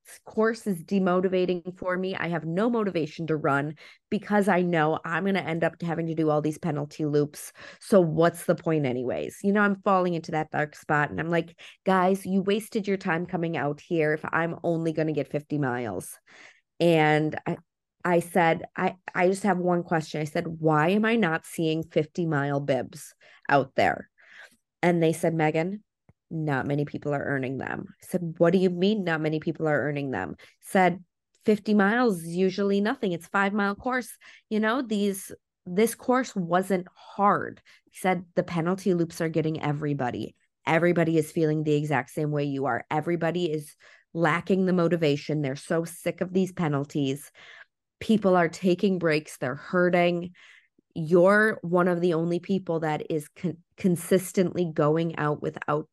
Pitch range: 150-185 Hz